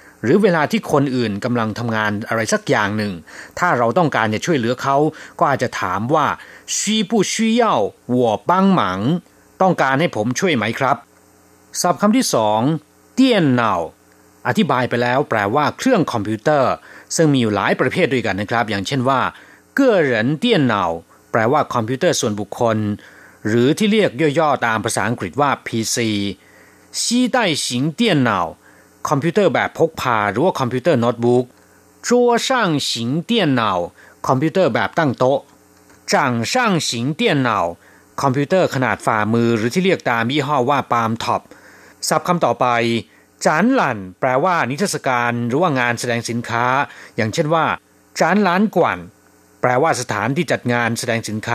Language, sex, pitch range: Thai, male, 110-165 Hz